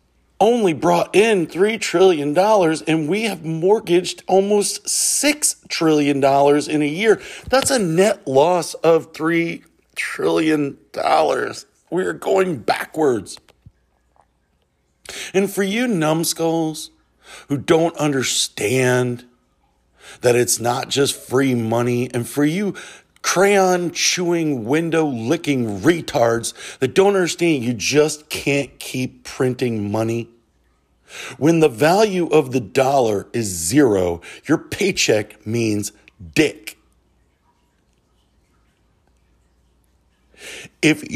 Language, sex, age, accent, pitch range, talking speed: English, male, 50-69, American, 105-165 Hz, 100 wpm